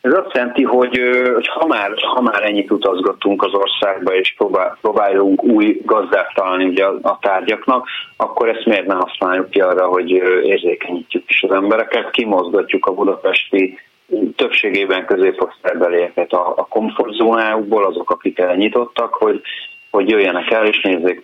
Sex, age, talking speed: male, 30-49, 140 wpm